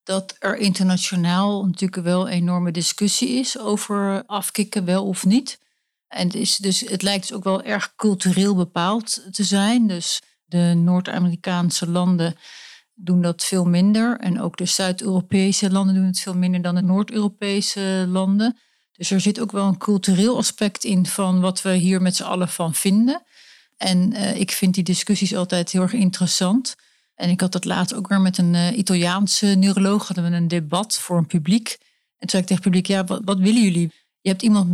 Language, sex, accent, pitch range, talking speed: Dutch, female, Dutch, 180-205 Hz, 185 wpm